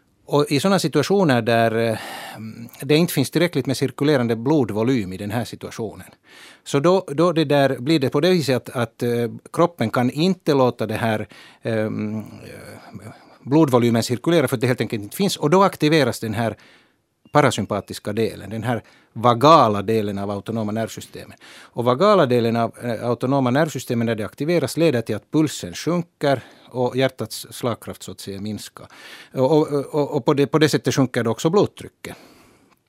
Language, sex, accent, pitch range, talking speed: Swedish, male, Finnish, 110-140 Hz, 160 wpm